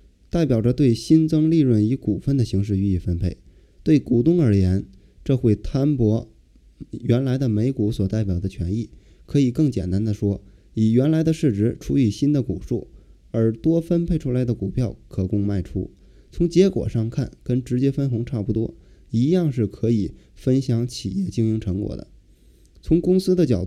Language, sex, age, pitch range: Chinese, male, 20-39, 95-140 Hz